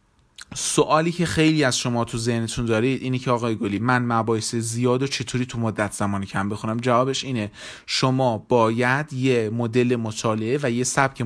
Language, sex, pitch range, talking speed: Persian, male, 125-165 Hz, 170 wpm